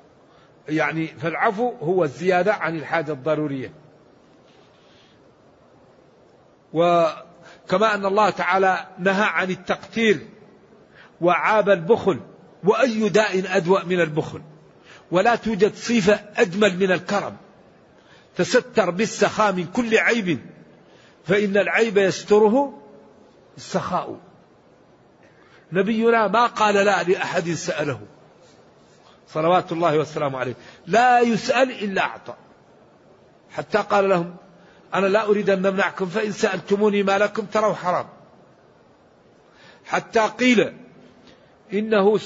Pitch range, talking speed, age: 180-220 Hz, 95 wpm, 50-69